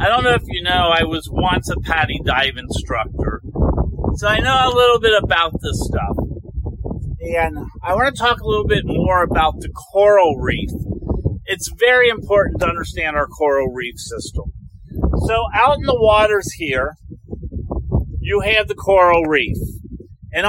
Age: 50-69